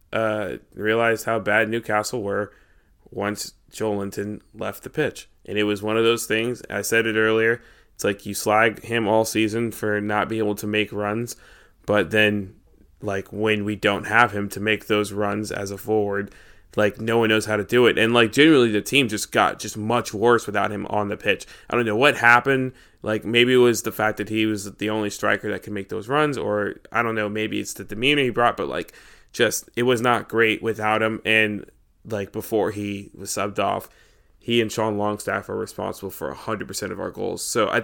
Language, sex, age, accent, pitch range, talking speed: English, male, 20-39, American, 105-115 Hz, 215 wpm